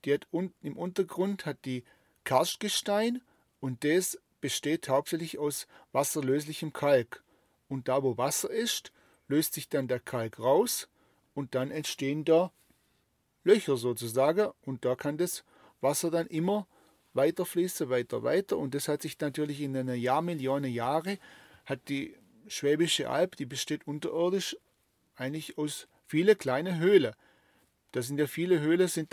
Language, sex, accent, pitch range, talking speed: German, male, German, 135-180 Hz, 145 wpm